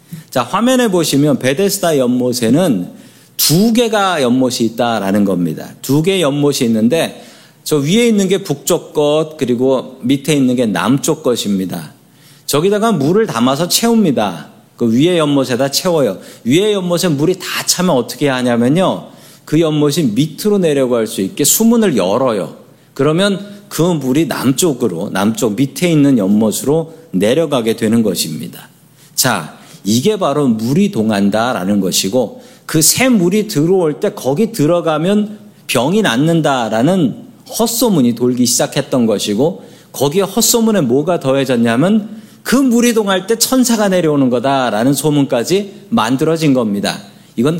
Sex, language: male, Korean